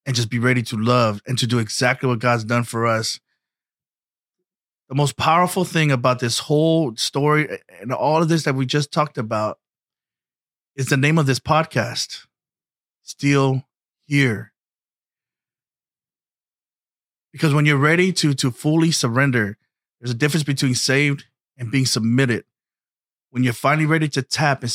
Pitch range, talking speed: 120-145 Hz, 155 wpm